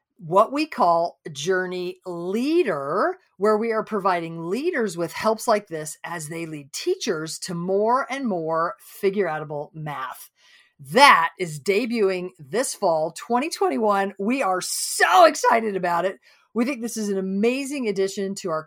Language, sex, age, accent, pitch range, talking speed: English, female, 40-59, American, 165-225 Hz, 145 wpm